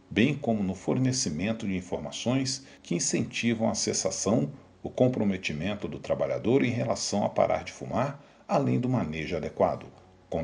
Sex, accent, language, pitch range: male, Brazilian, Portuguese, 90-115 Hz